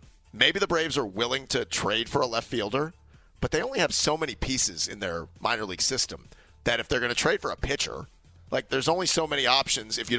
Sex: male